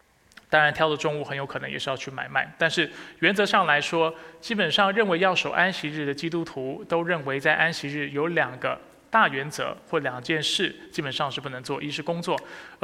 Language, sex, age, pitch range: Chinese, male, 20-39, 140-180 Hz